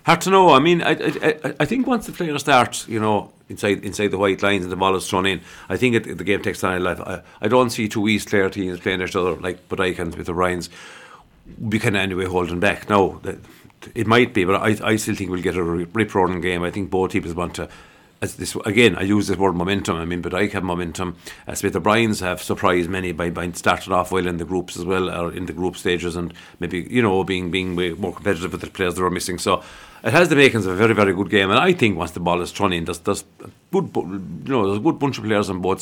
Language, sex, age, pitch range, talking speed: English, male, 50-69, 90-110 Hz, 270 wpm